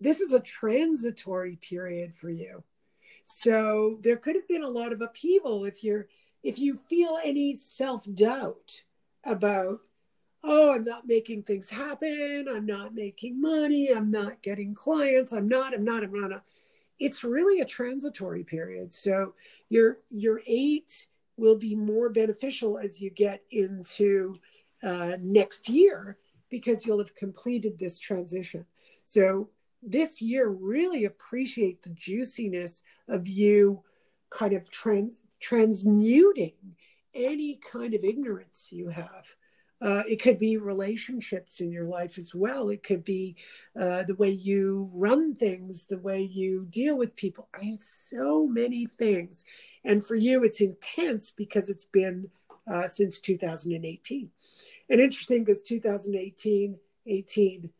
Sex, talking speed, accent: female, 140 wpm, American